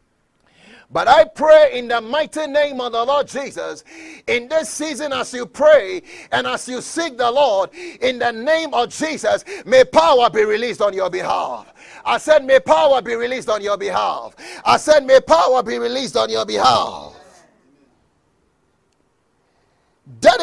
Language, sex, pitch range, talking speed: English, male, 205-305 Hz, 160 wpm